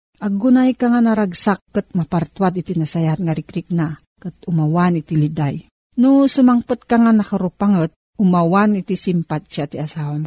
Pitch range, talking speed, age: 175-230 Hz, 145 wpm, 40-59